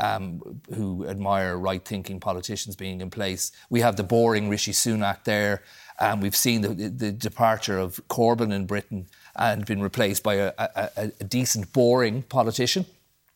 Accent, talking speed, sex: Irish, 160 wpm, male